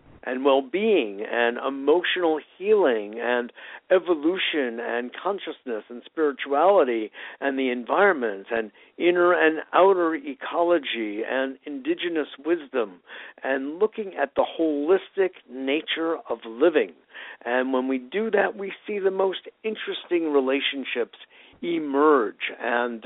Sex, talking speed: male, 110 wpm